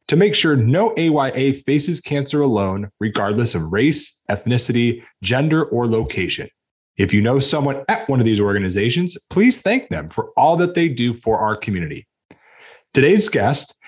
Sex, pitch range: male, 110-150 Hz